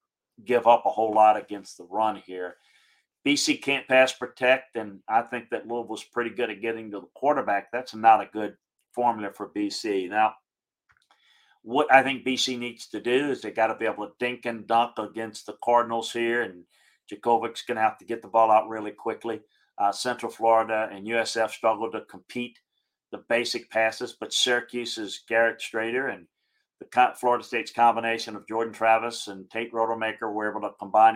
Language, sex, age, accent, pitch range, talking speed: English, male, 50-69, American, 105-125 Hz, 185 wpm